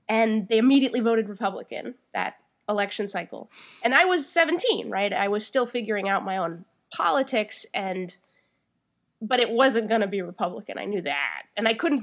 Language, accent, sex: English, American, female